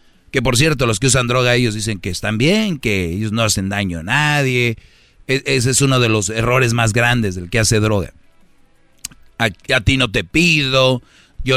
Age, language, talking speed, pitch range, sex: 40-59, Spanish, 195 wpm, 110-135 Hz, male